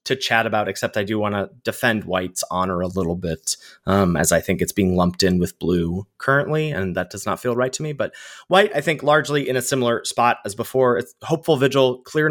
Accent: American